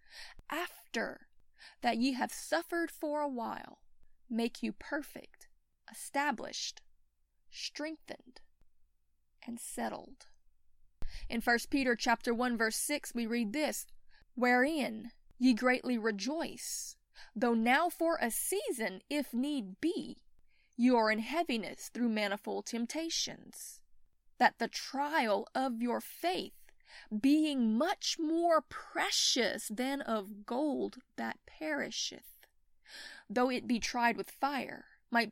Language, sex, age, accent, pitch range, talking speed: English, female, 20-39, American, 225-295 Hz, 110 wpm